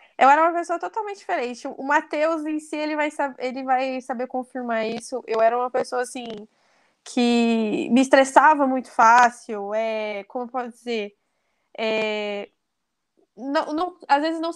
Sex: female